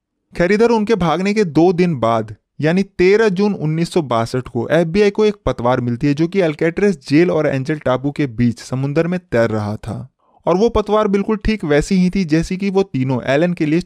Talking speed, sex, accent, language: 205 wpm, male, native, Hindi